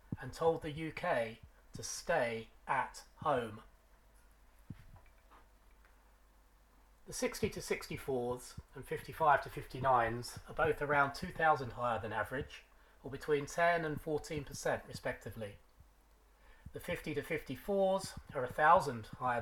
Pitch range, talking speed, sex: 125-165 Hz, 110 wpm, male